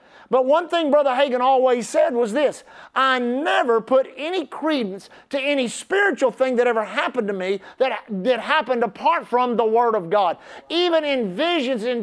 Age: 40-59